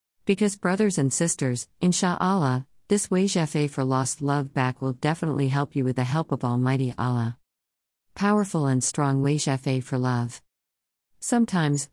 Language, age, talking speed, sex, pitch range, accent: English, 50-69, 140 wpm, female, 130-160 Hz, American